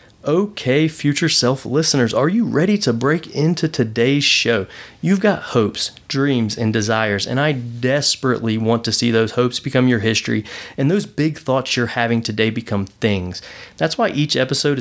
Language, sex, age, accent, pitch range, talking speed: English, male, 30-49, American, 115-160 Hz, 165 wpm